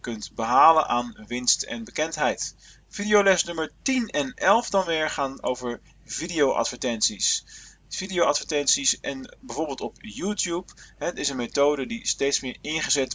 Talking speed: 140 wpm